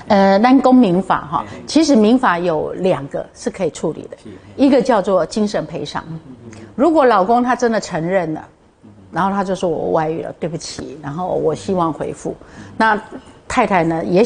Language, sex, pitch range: Chinese, female, 160-225 Hz